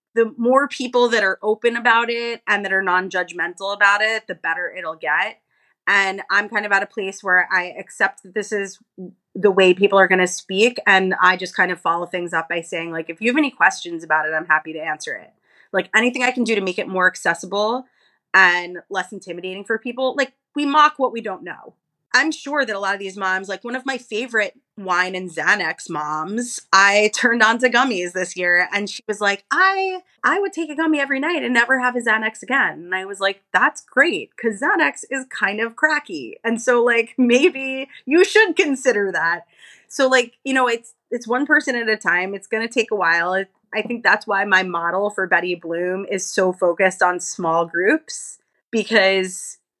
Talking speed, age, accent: 215 wpm, 20-39, American